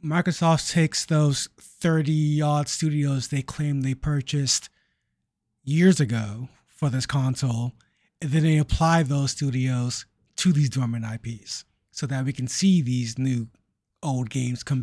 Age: 30-49